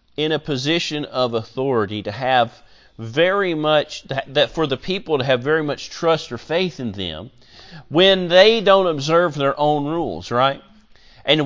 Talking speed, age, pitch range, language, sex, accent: 160 wpm, 40-59, 160-225 Hz, English, male, American